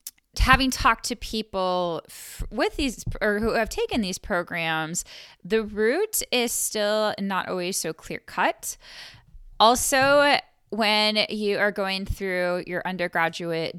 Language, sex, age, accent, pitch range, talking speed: English, female, 10-29, American, 170-220 Hz, 125 wpm